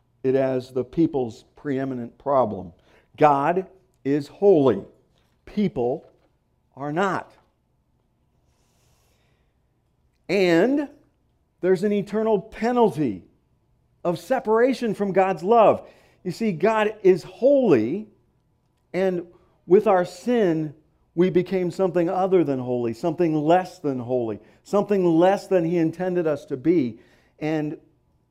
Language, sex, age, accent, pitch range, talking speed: English, male, 50-69, American, 140-200 Hz, 105 wpm